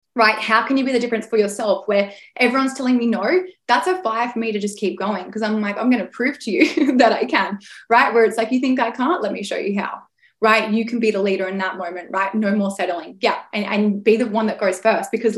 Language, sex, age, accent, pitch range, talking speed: English, female, 20-39, Australian, 205-235 Hz, 275 wpm